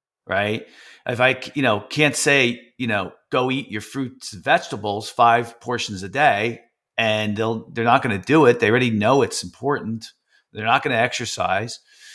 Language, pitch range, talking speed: English, 115-145 Hz, 185 wpm